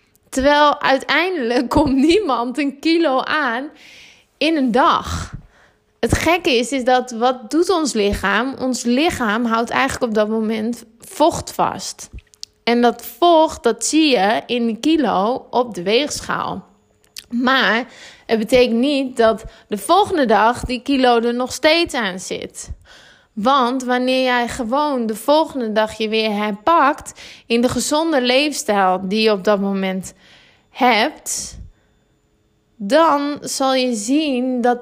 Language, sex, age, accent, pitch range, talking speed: Dutch, female, 20-39, Dutch, 225-285 Hz, 140 wpm